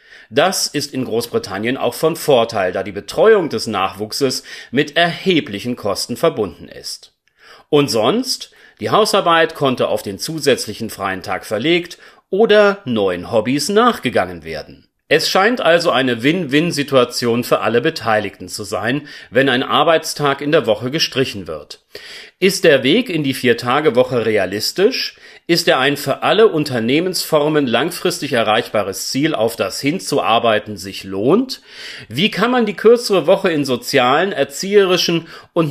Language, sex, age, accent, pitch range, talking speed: German, male, 40-59, German, 125-185 Hz, 140 wpm